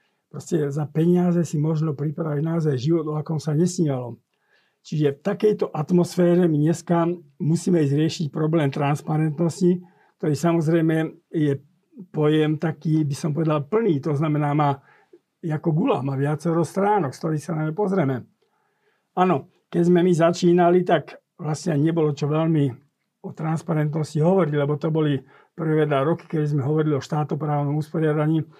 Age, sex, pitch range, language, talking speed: 50-69, male, 150-175 Hz, Slovak, 140 wpm